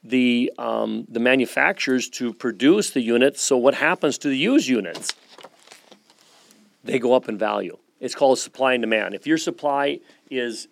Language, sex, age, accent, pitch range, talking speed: English, male, 40-59, American, 115-135 Hz, 160 wpm